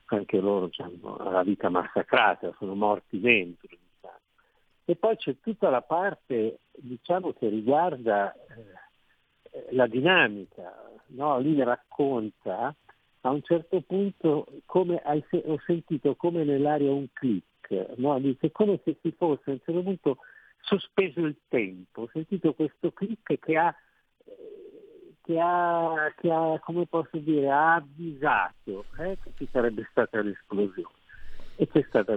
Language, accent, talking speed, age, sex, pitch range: Italian, native, 130 wpm, 50-69, male, 105-170 Hz